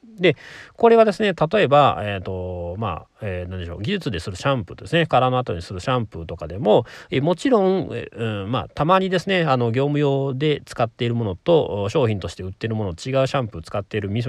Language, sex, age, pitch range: Japanese, male, 40-59, 105-170 Hz